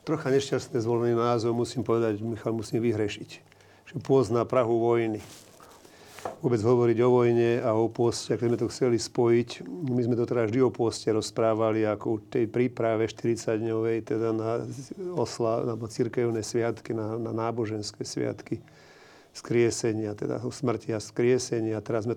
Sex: male